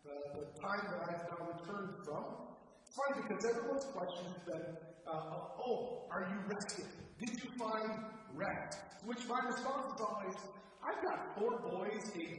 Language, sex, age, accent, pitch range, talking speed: English, male, 40-59, American, 180-250 Hz, 165 wpm